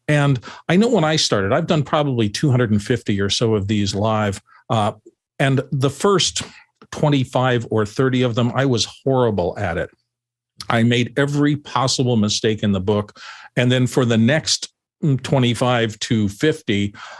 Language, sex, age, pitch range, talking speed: English, male, 50-69, 105-130 Hz, 155 wpm